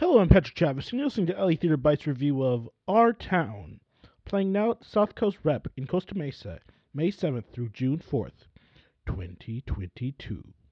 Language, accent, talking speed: English, American, 170 wpm